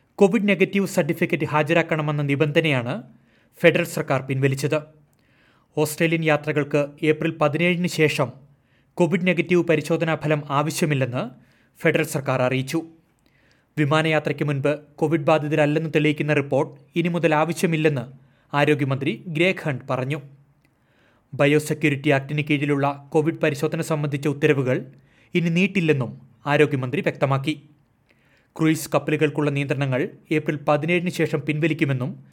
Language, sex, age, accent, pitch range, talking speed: Malayalam, male, 30-49, native, 135-155 Hz, 95 wpm